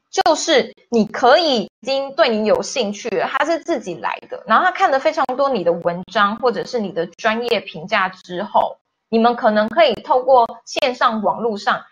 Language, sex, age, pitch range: Chinese, female, 20-39, 195-275 Hz